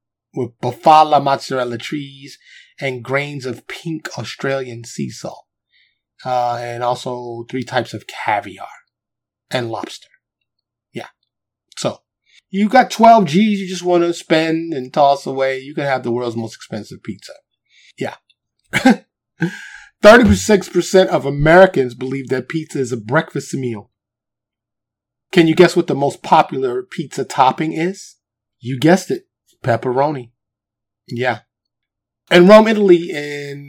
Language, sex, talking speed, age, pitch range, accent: English, male, 130 wpm, 30-49, 120-165 Hz, American